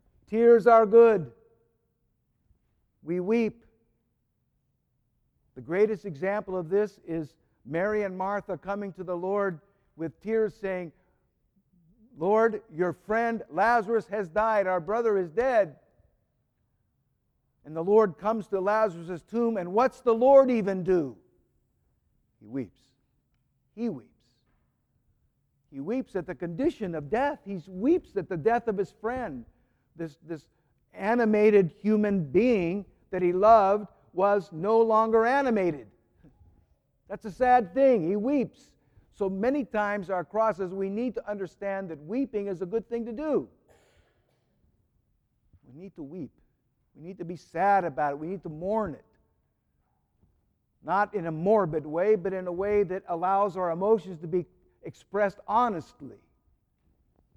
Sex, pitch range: male, 170-220 Hz